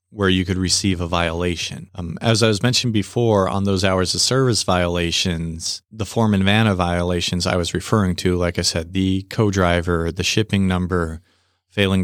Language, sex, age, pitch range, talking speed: Punjabi, male, 40-59, 90-105 Hz, 180 wpm